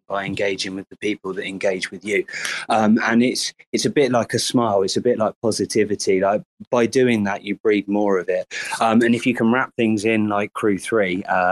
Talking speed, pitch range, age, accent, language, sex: 230 wpm, 95-110 Hz, 20-39, British, English, male